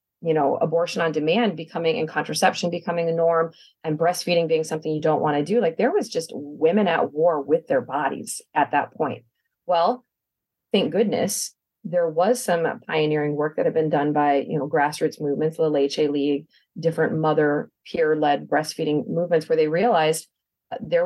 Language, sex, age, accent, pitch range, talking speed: English, female, 30-49, American, 155-215 Hz, 175 wpm